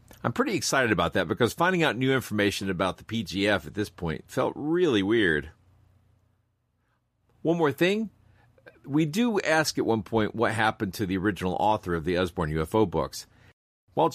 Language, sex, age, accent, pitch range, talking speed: English, male, 50-69, American, 85-125 Hz, 170 wpm